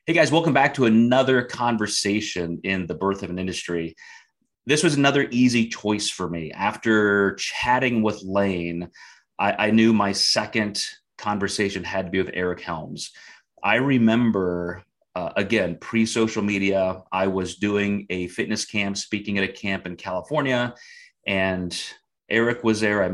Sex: male